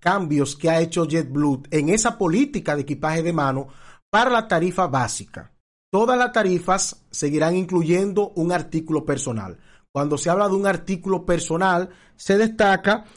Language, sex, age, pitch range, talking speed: Spanish, male, 40-59, 150-195 Hz, 150 wpm